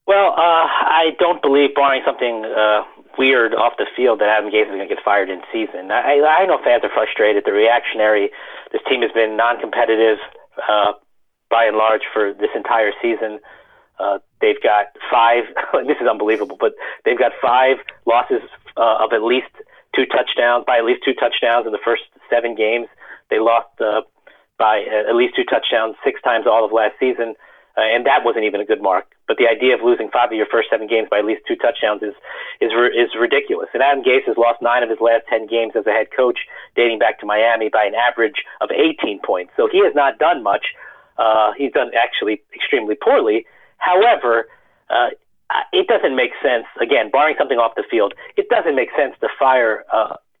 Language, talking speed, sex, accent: English, 200 wpm, male, American